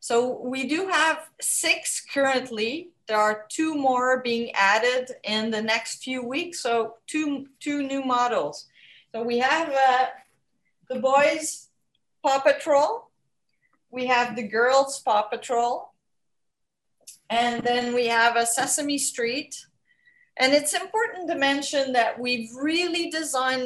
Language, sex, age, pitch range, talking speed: English, female, 40-59, 235-290 Hz, 130 wpm